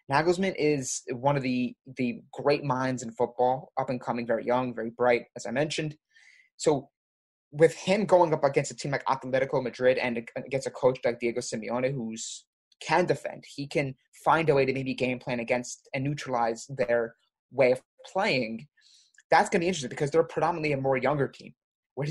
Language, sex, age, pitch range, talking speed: English, male, 20-39, 120-145 Hz, 190 wpm